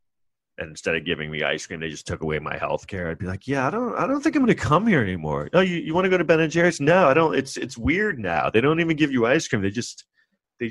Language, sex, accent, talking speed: English, male, American, 315 wpm